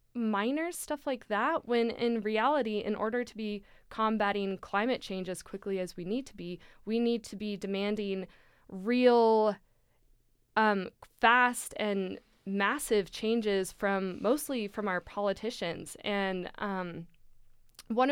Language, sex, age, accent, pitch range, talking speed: English, female, 20-39, American, 185-230 Hz, 135 wpm